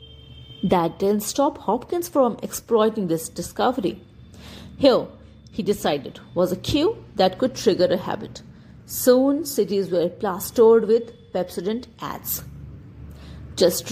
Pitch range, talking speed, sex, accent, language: 185-235 Hz, 115 wpm, female, Indian, English